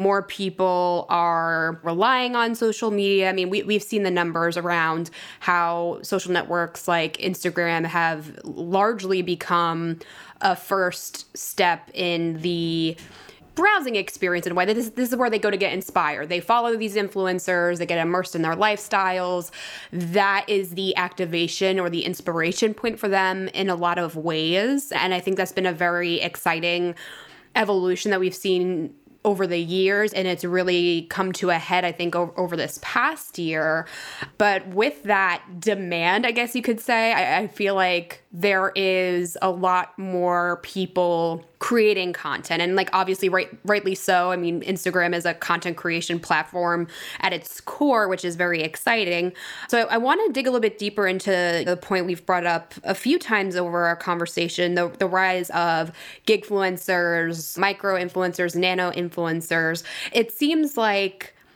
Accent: American